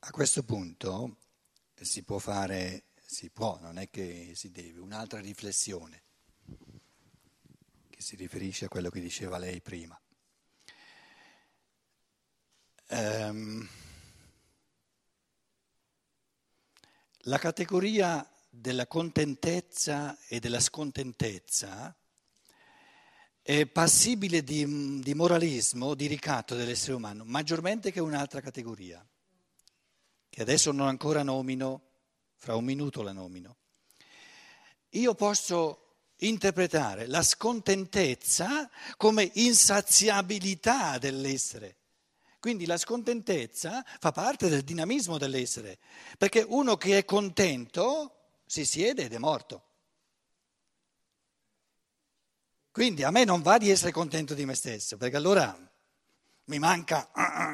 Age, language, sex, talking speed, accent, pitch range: 60-79, Italian, male, 100 wpm, native, 115-185 Hz